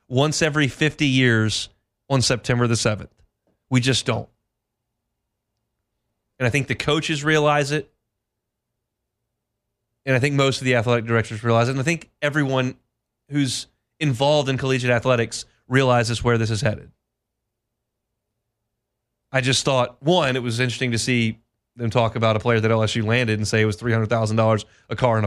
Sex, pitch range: male, 115-130 Hz